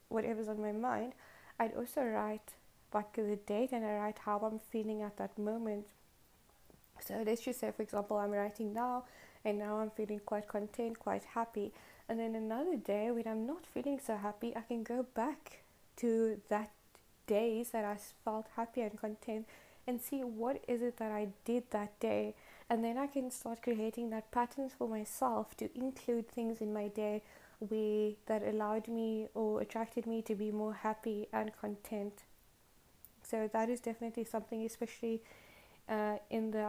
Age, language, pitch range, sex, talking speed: 20-39, English, 215-235 Hz, female, 175 wpm